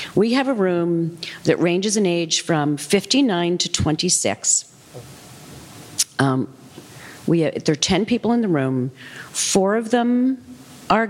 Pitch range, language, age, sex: 150-200 Hz, English, 40-59, female